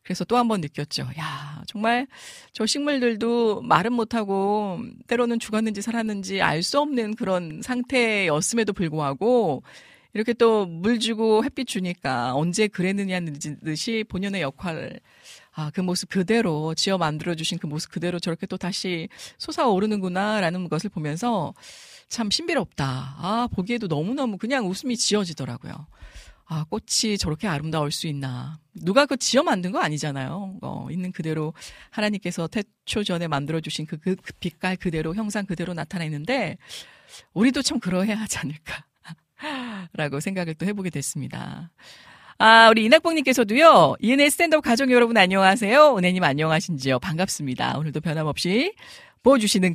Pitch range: 160-230 Hz